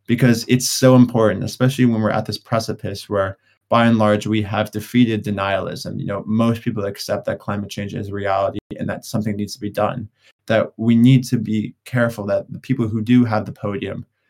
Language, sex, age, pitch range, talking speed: English, male, 20-39, 105-120 Hz, 205 wpm